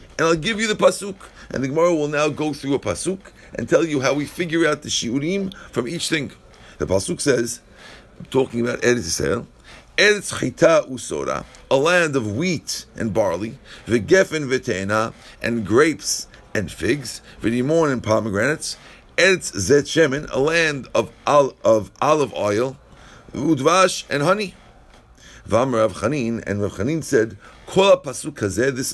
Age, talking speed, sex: 50-69, 145 wpm, male